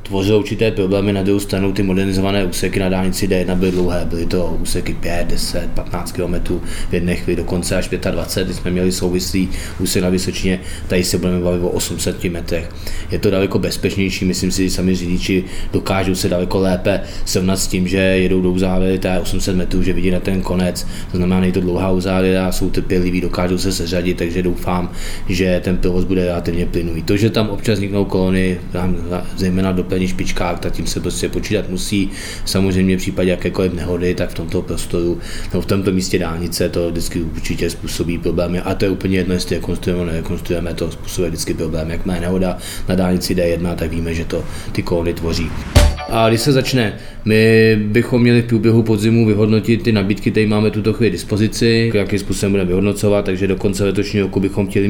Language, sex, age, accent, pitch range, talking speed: Czech, male, 20-39, native, 90-100 Hz, 190 wpm